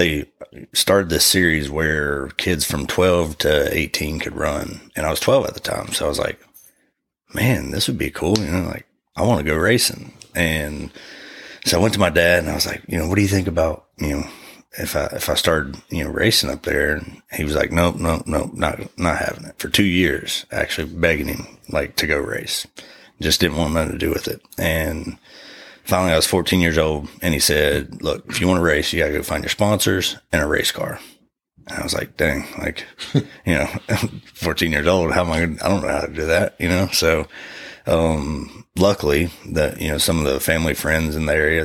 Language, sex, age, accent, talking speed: English, male, 30-49, American, 230 wpm